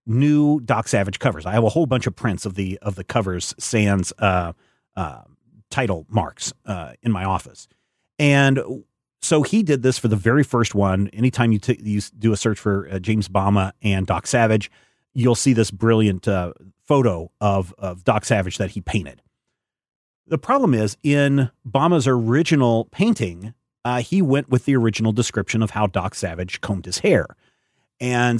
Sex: male